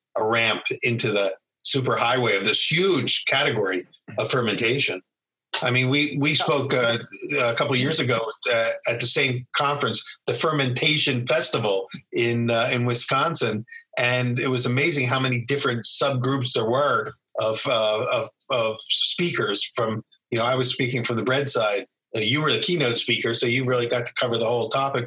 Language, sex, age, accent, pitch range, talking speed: English, male, 50-69, American, 120-140 Hz, 175 wpm